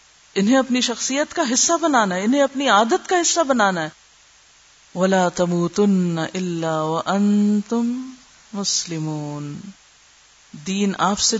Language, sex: Urdu, female